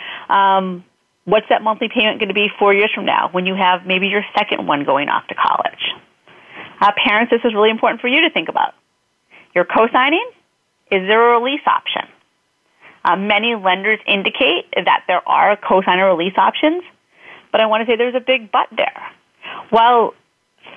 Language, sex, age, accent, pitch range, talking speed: English, female, 30-49, American, 195-235 Hz, 185 wpm